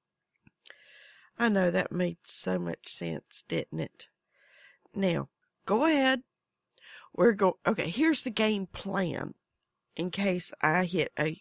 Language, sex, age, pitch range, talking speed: English, female, 50-69, 185-250 Hz, 125 wpm